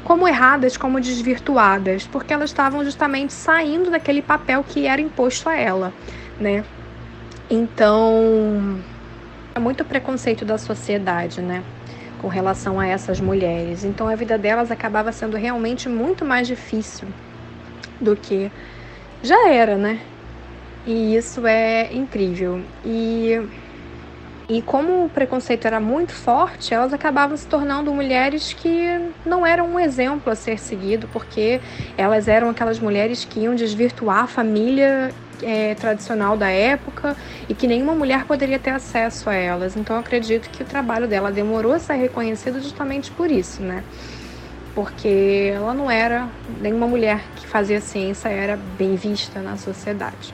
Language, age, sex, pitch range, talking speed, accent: Portuguese, 20-39, female, 205-270 Hz, 145 wpm, Brazilian